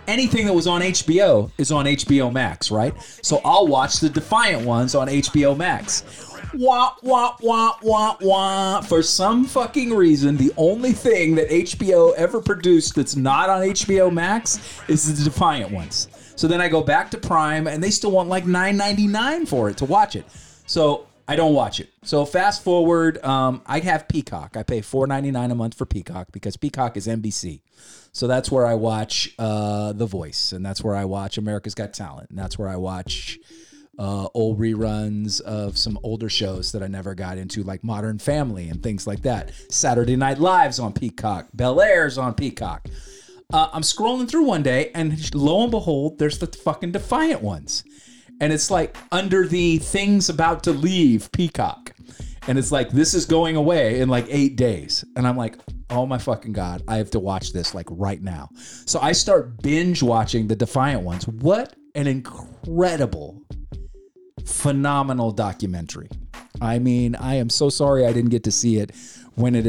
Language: English